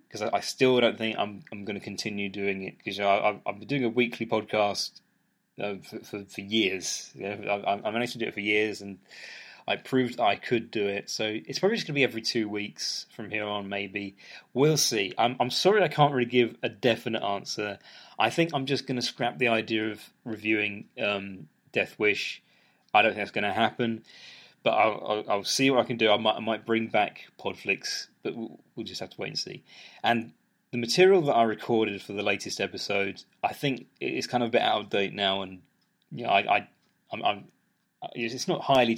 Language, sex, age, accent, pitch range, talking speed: English, male, 20-39, British, 100-120 Hz, 220 wpm